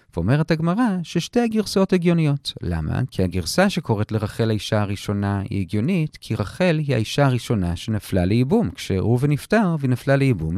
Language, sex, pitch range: Hebrew, male, 105-165 Hz